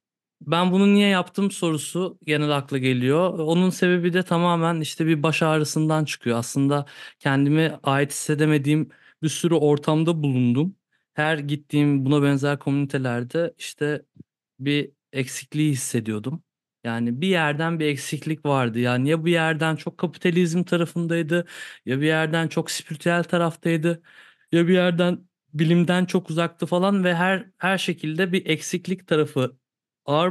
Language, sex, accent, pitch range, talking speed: Turkish, male, native, 140-170 Hz, 135 wpm